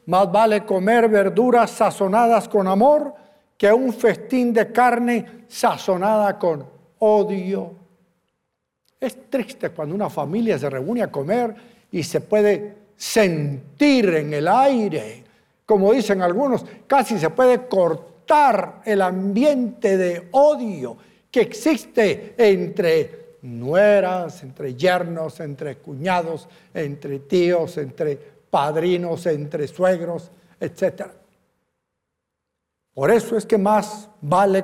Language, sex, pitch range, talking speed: Spanish, male, 180-235 Hz, 110 wpm